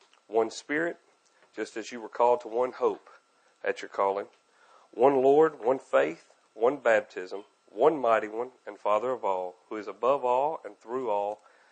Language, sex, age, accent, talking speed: English, male, 40-59, American, 170 wpm